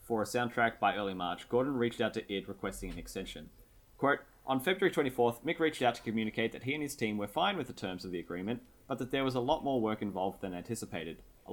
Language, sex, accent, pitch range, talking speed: English, male, Australian, 100-120 Hz, 250 wpm